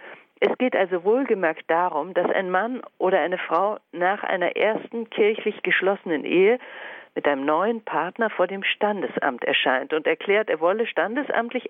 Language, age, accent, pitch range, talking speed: German, 50-69, German, 165-250 Hz, 155 wpm